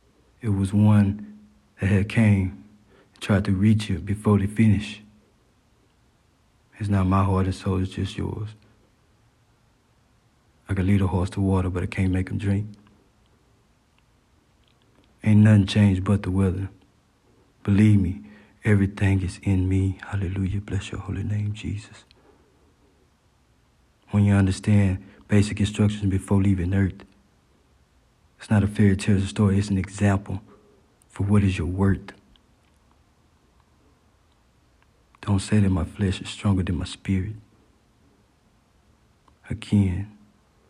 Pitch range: 95-105 Hz